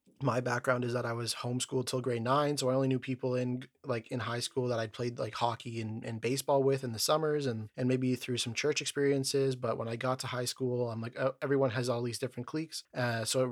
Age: 30-49